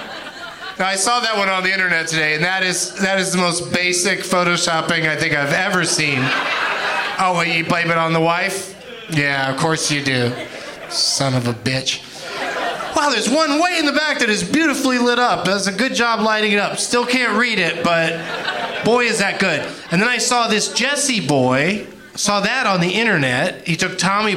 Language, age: English, 30-49